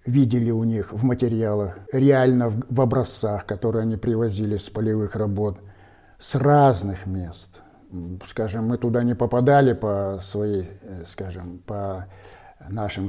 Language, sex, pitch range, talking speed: Russian, male, 100-125 Hz, 125 wpm